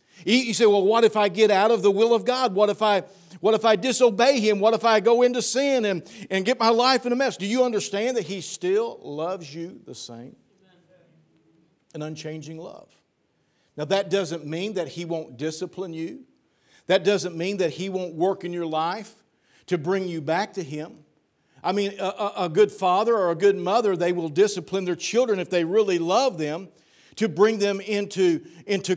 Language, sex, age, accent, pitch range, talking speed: English, male, 50-69, American, 165-210 Hz, 205 wpm